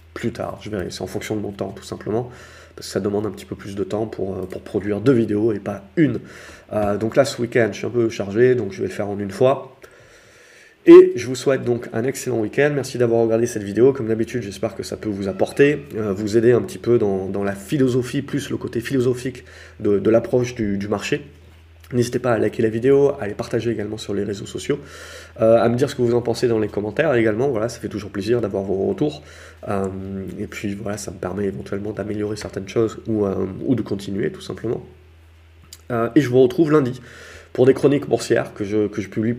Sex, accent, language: male, French, French